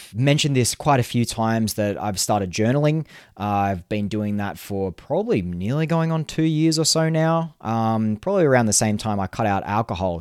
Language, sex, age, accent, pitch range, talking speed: English, male, 20-39, Australian, 95-130 Hz, 205 wpm